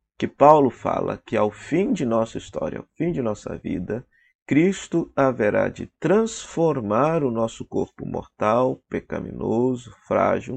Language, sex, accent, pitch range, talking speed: Portuguese, male, Brazilian, 115-170 Hz, 135 wpm